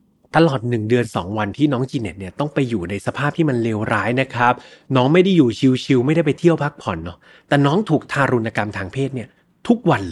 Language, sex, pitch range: Thai, male, 115-155 Hz